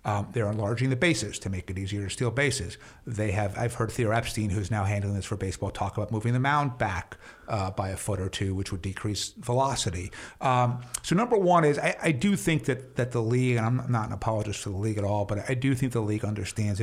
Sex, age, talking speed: male, 50-69, 250 wpm